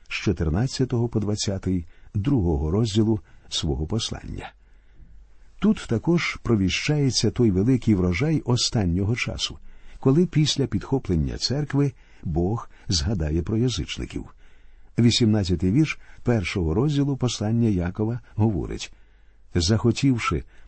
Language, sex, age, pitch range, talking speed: Ukrainian, male, 50-69, 95-130 Hz, 95 wpm